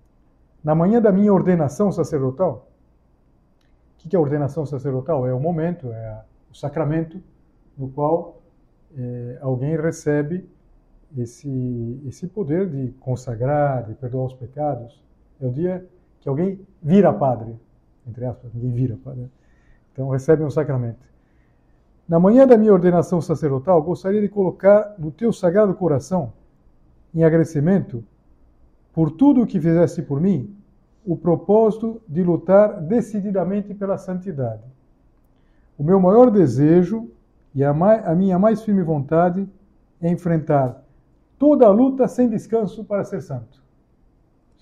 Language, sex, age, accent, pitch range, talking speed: Portuguese, male, 60-79, Brazilian, 125-185 Hz, 135 wpm